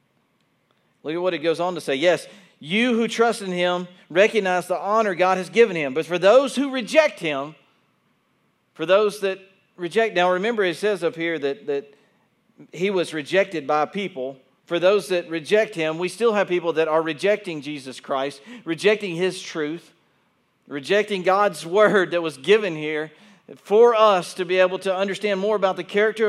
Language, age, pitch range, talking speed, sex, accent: English, 50-69, 165-210 Hz, 180 wpm, male, American